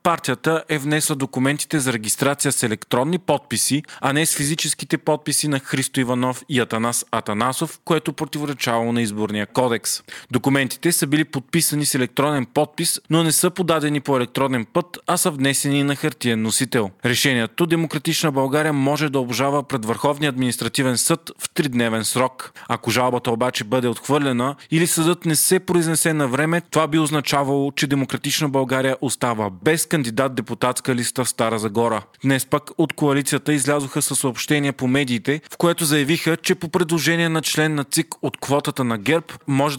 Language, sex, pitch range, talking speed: Bulgarian, male, 125-155 Hz, 165 wpm